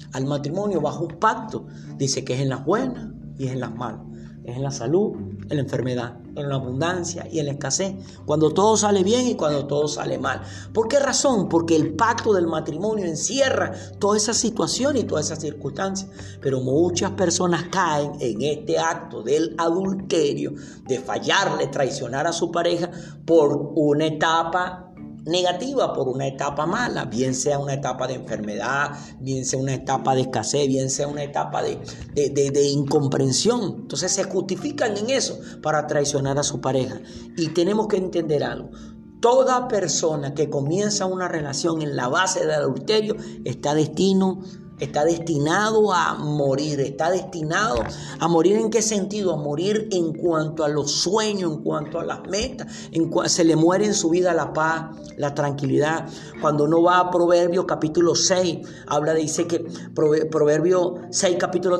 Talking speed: 170 wpm